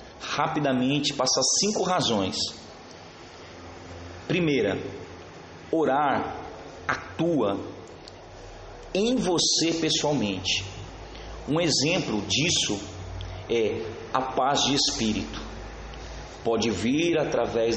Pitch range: 105-160 Hz